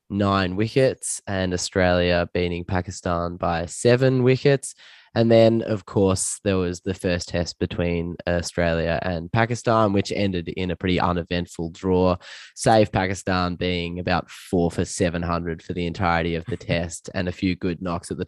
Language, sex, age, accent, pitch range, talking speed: English, male, 10-29, Australian, 85-105 Hz, 160 wpm